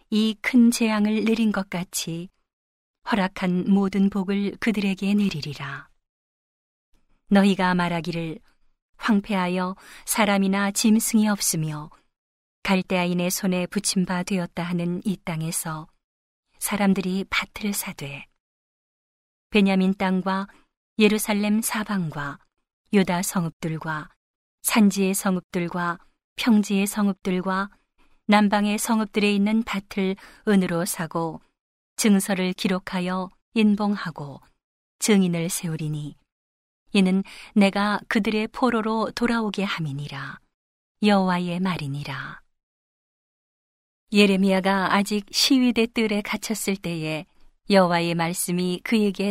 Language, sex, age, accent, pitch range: Korean, female, 40-59, native, 175-210 Hz